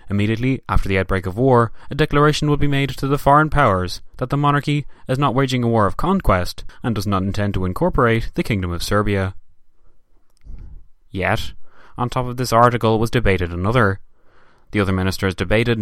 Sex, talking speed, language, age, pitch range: male, 180 wpm, English, 20-39, 100-135 Hz